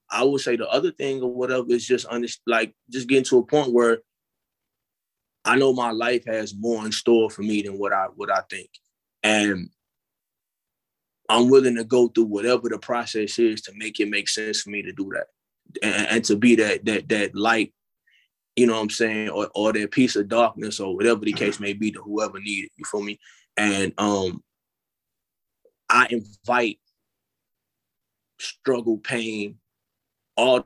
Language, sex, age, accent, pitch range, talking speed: English, male, 20-39, American, 110-130 Hz, 180 wpm